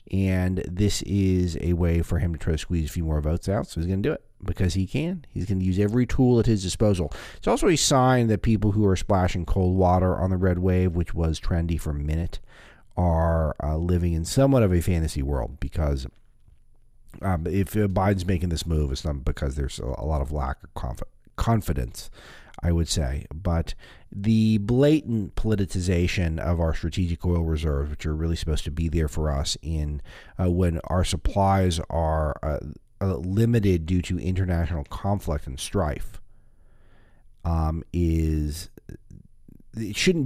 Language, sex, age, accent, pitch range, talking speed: English, male, 40-59, American, 80-100 Hz, 175 wpm